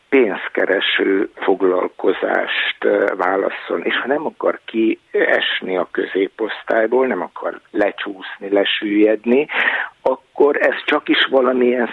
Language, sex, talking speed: Hungarian, male, 95 wpm